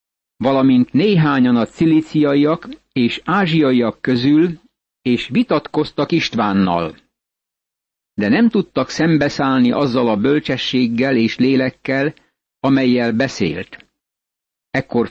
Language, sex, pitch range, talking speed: Hungarian, male, 130-155 Hz, 85 wpm